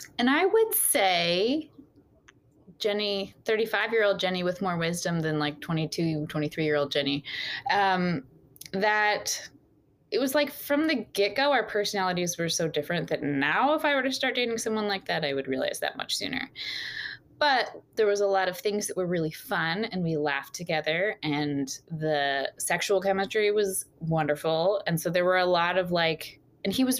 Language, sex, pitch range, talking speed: English, female, 155-210 Hz, 180 wpm